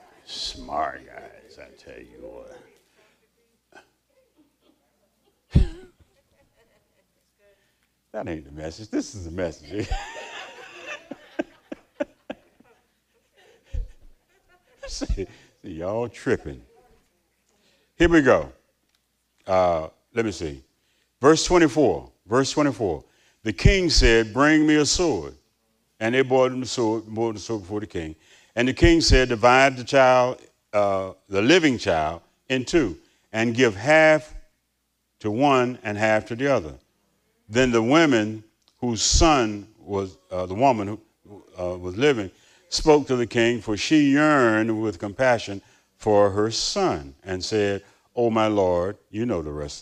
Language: English